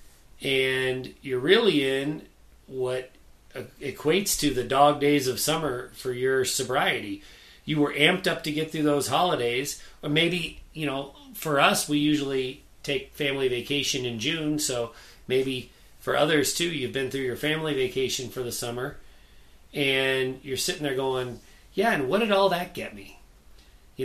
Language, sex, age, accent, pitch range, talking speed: English, male, 40-59, American, 120-145 Hz, 160 wpm